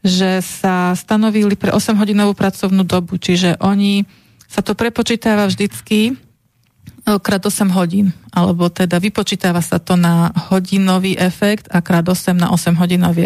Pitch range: 175-200 Hz